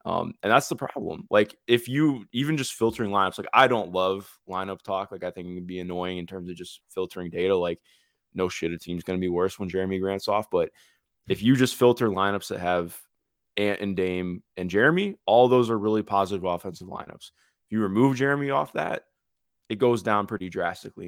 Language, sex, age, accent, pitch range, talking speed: English, male, 20-39, American, 90-115 Hz, 210 wpm